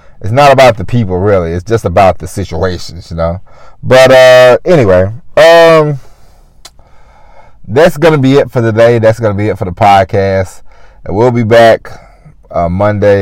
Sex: male